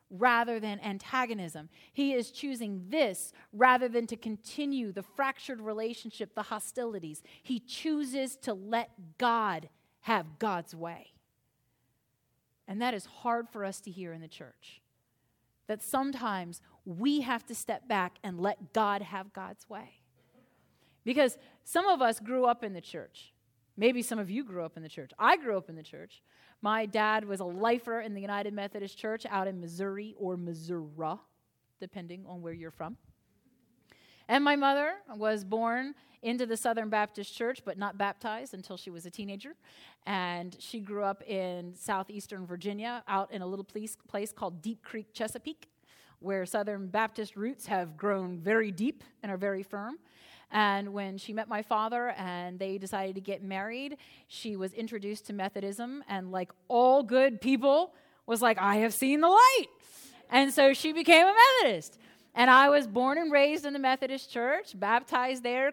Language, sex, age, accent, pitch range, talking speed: English, female, 30-49, American, 195-250 Hz, 170 wpm